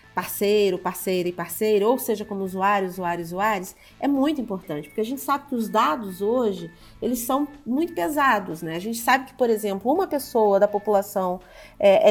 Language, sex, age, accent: Portuguese, female, 40-59, Brazilian